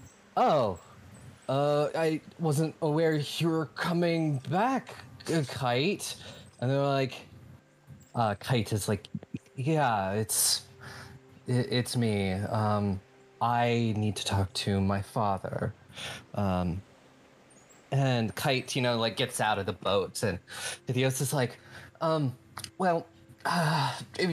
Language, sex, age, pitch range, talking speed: English, male, 20-39, 115-140 Hz, 115 wpm